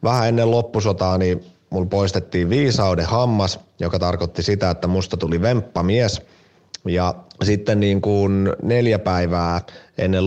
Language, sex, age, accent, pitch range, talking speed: Finnish, male, 30-49, native, 90-105 Hz, 125 wpm